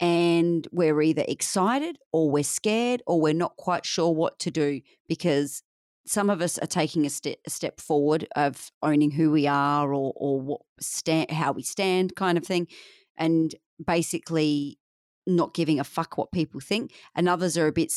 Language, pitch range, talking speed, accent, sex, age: English, 150-185 Hz, 175 wpm, Australian, female, 40-59